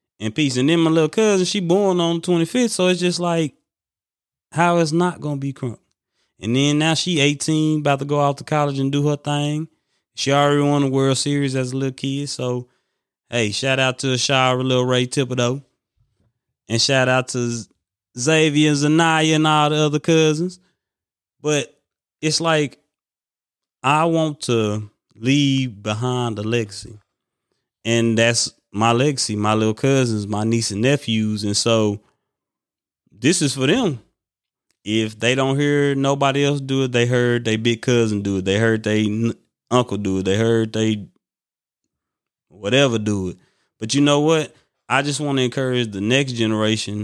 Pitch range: 115-150 Hz